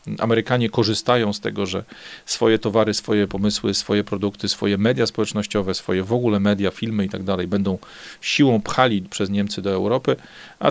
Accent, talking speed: native, 170 wpm